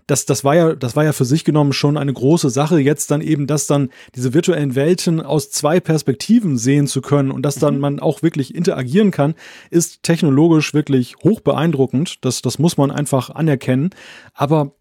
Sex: male